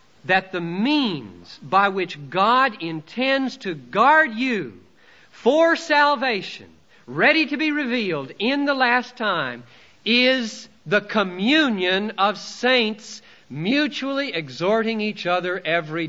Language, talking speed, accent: English, 110 wpm, American